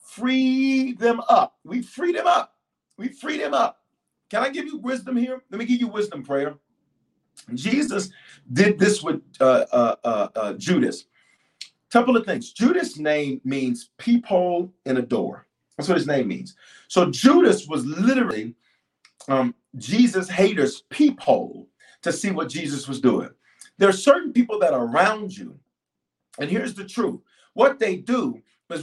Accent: American